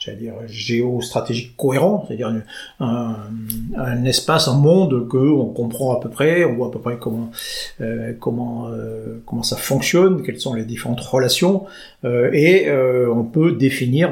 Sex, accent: male, French